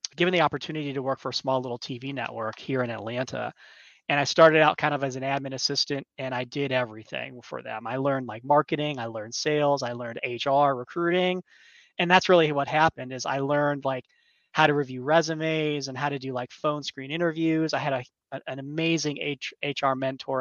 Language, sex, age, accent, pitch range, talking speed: English, male, 20-39, American, 125-150 Hz, 205 wpm